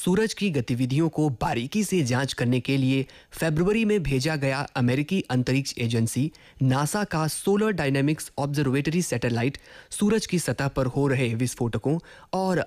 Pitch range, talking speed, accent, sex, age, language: 125-165 Hz, 145 wpm, native, male, 20-39, Hindi